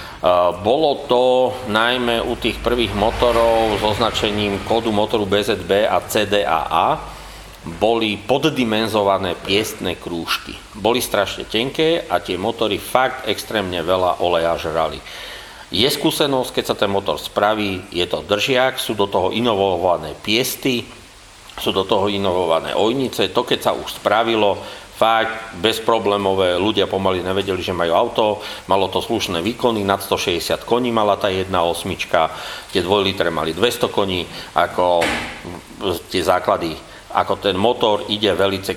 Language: English